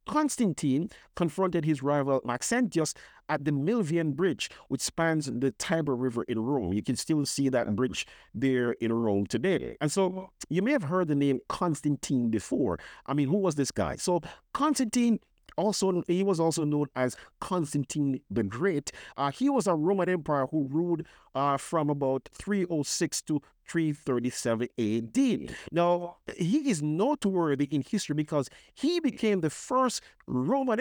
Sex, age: male, 50-69